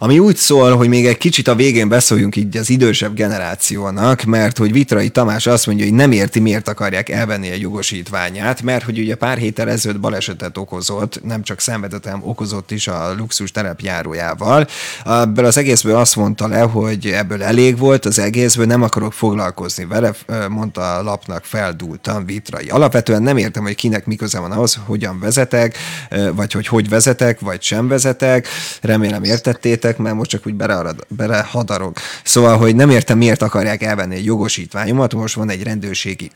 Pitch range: 100-115 Hz